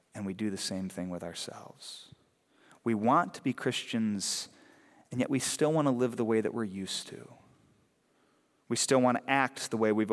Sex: male